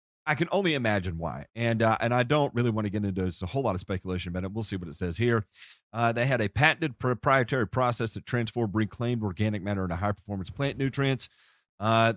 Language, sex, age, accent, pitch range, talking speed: English, male, 40-59, American, 100-120 Hz, 215 wpm